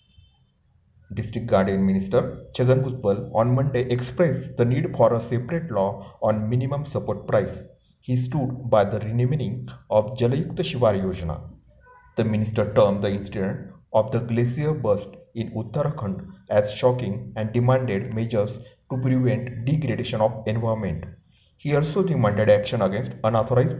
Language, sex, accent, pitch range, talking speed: Marathi, male, native, 100-130 Hz, 135 wpm